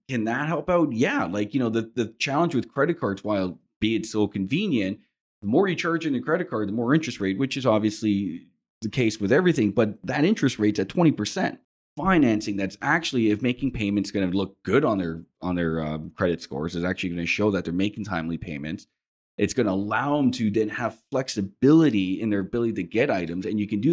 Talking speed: 225 wpm